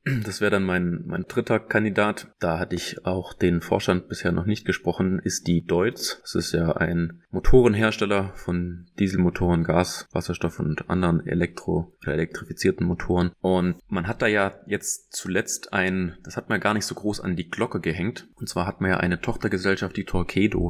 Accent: German